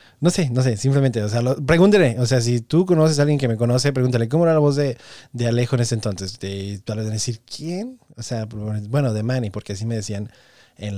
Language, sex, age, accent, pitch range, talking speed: Spanish, male, 20-39, Mexican, 105-130 Hz, 245 wpm